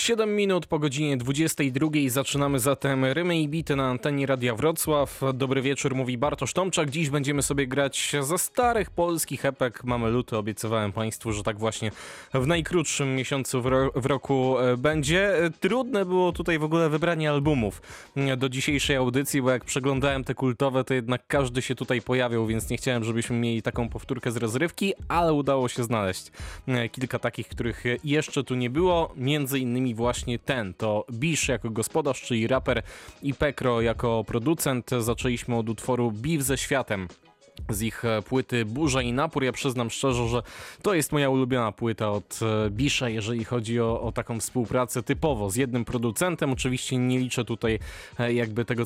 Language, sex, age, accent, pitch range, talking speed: Polish, male, 20-39, native, 120-140 Hz, 165 wpm